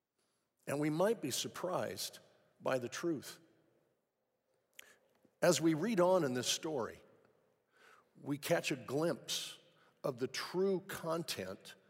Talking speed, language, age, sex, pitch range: 115 wpm, English, 50-69, male, 145-185 Hz